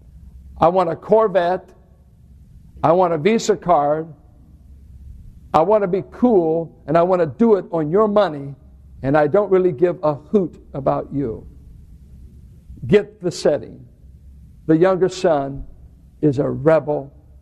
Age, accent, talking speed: 60-79, American, 140 wpm